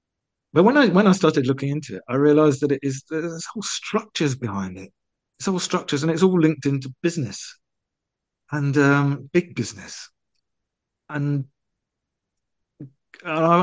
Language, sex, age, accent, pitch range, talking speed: English, male, 50-69, British, 110-140 Hz, 150 wpm